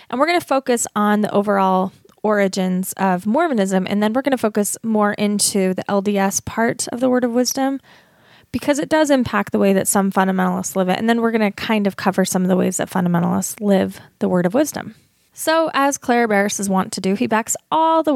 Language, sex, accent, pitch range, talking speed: English, female, American, 195-235 Hz, 225 wpm